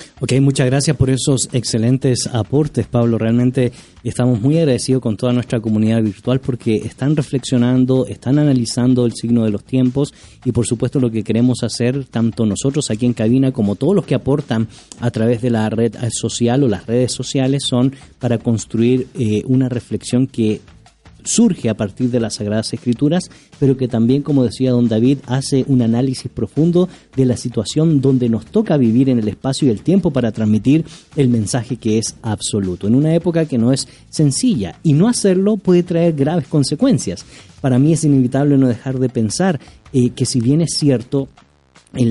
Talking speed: 180 wpm